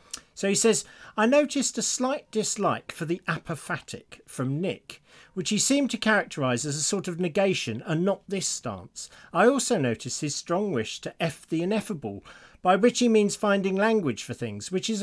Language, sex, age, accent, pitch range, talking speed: English, male, 40-59, British, 125-195 Hz, 190 wpm